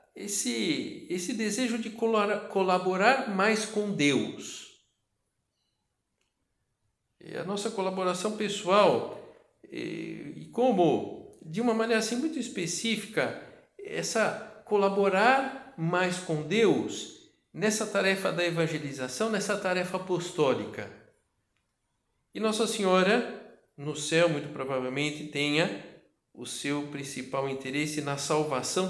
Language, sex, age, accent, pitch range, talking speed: Portuguese, male, 60-79, Brazilian, 145-220 Hz, 100 wpm